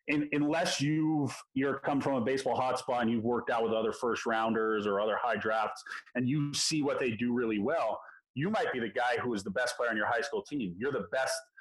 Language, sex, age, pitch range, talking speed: English, male, 30-49, 120-150 Hz, 240 wpm